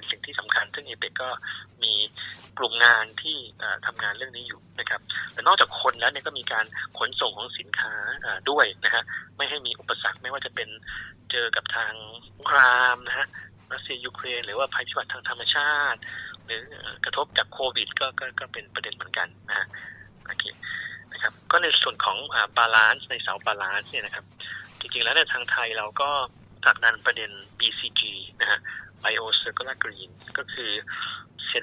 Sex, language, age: male, Thai, 20-39